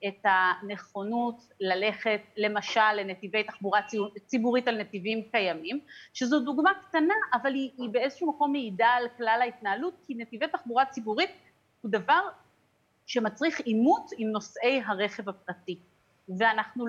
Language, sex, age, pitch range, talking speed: Hebrew, female, 30-49, 210-300 Hz, 125 wpm